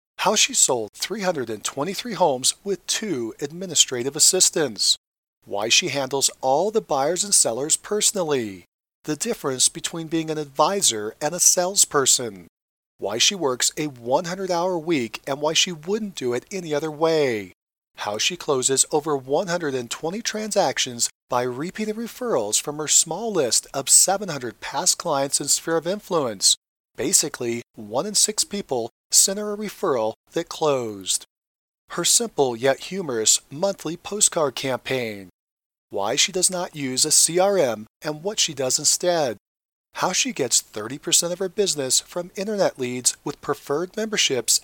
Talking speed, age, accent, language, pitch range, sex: 145 wpm, 40-59, American, English, 130-190 Hz, male